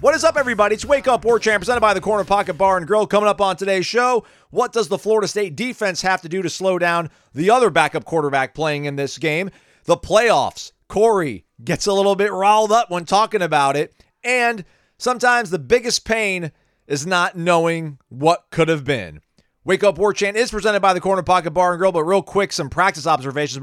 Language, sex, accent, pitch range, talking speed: English, male, American, 140-195 Hz, 220 wpm